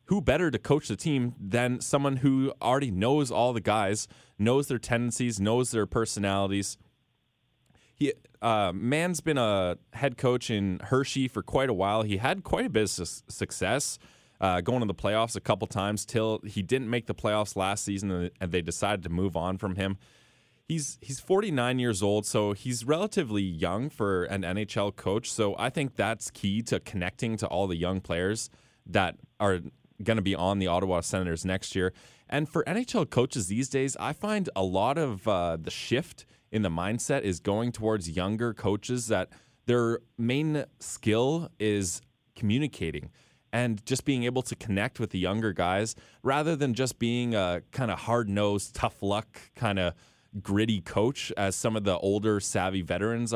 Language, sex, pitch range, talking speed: English, male, 95-125 Hz, 180 wpm